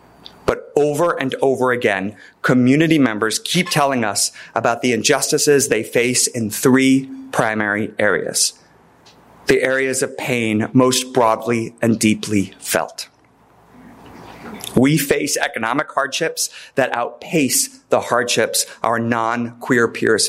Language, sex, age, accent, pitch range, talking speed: English, male, 30-49, American, 115-160 Hz, 115 wpm